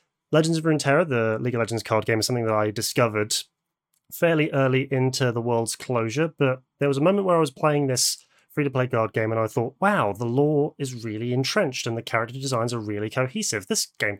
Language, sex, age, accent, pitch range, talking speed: English, male, 30-49, British, 115-145 Hz, 215 wpm